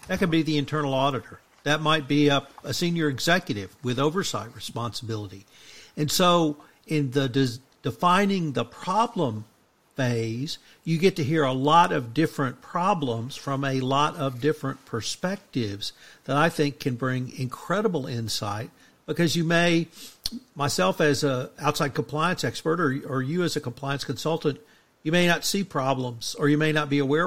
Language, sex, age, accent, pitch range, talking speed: English, male, 50-69, American, 130-165 Hz, 160 wpm